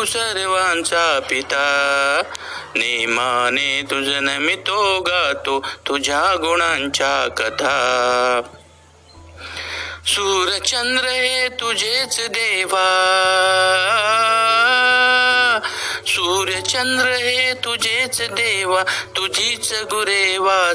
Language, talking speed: Marathi, 60 wpm